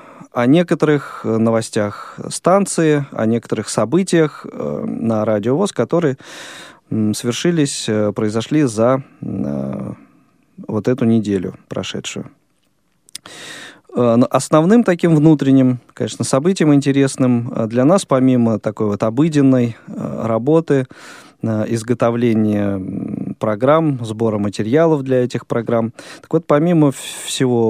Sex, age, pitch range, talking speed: male, 20-39, 110-145 Hz, 90 wpm